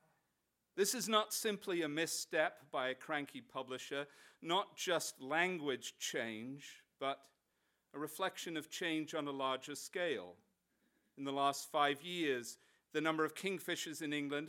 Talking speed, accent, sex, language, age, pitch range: 140 wpm, British, male, English, 40-59, 135-170 Hz